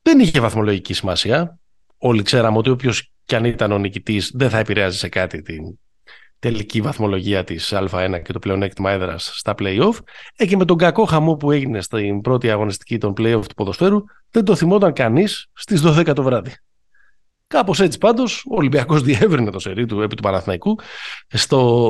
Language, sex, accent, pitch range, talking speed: Greek, male, native, 100-130 Hz, 175 wpm